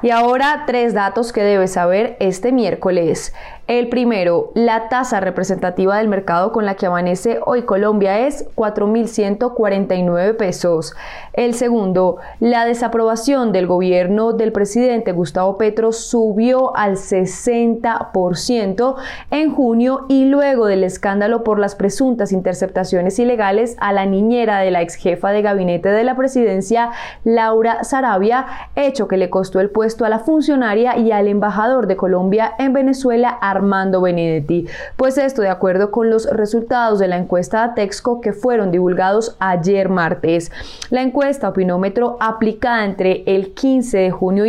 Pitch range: 190-235 Hz